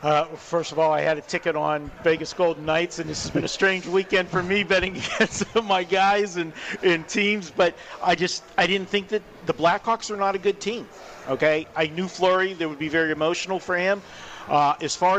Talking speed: 220 wpm